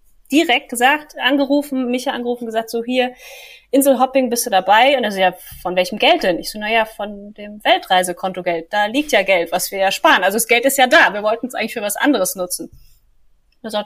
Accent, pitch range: German, 195-260 Hz